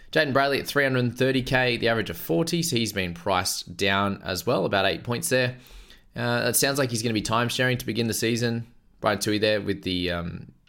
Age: 20-39